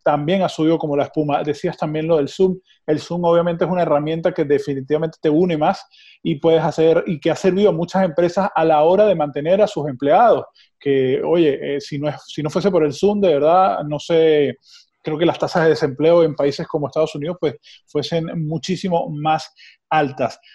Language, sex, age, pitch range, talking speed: Spanish, male, 20-39, 150-190 Hz, 210 wpm